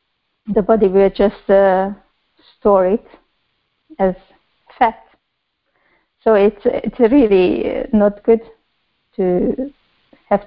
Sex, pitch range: female, 195-235 Hz